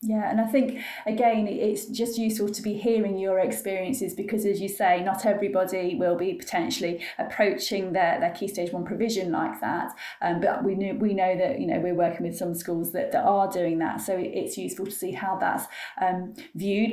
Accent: British